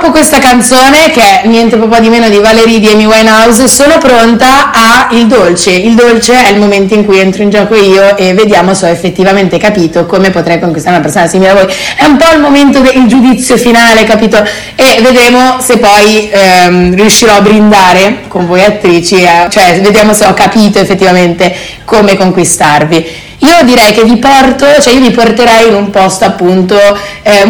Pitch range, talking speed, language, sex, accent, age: 180-225 Hz, 190 wpm, Italian, female, native, 20-39